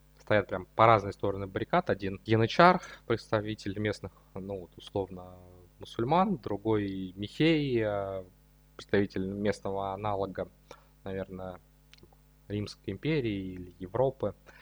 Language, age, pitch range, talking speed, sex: Russian, 20-39, 95-110 Hz, 100 wpm, male